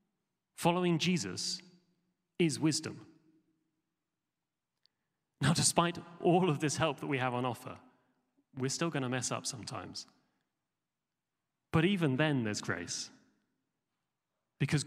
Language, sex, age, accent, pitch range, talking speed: English, male, 30-49, British, 125-155 Hz, 110 wpm